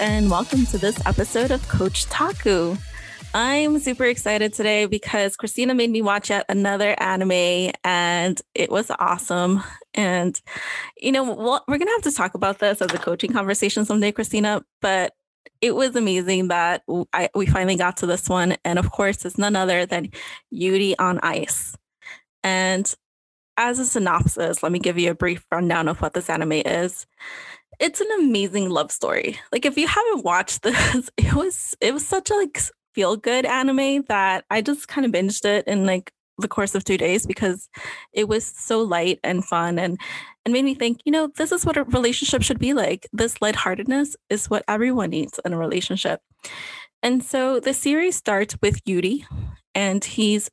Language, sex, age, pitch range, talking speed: English, female, 20-39, 185-255 Hz, 185 wpm